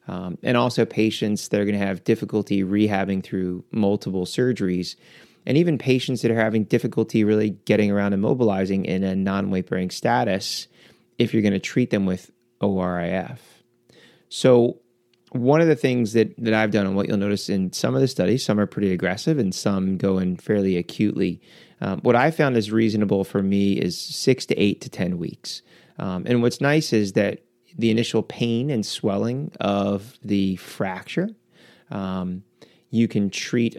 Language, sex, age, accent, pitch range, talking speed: English, male, 30-49, American, 95-120 Hz, 175 wpm